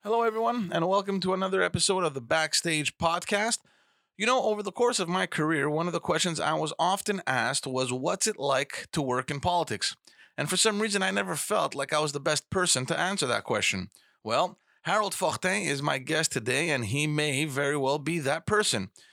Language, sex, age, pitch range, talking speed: English, male, 30-49, 140-180 Hz, 210 wpm